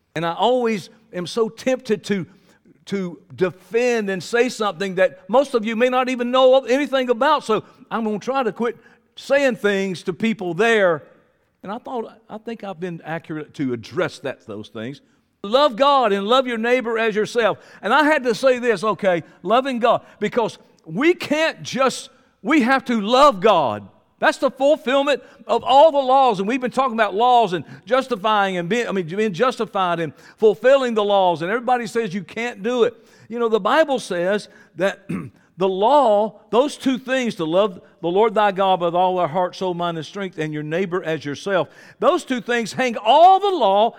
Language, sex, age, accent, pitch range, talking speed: English, male, 50-69, American, 190-255 Hz, 190 wpm